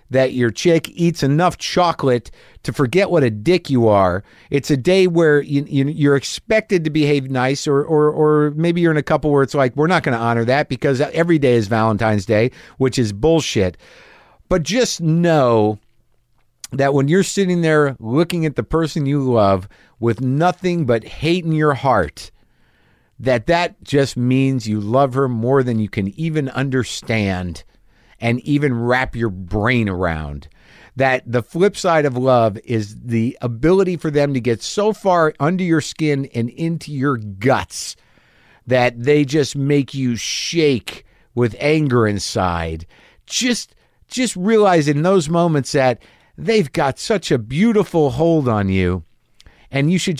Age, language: 50-69, English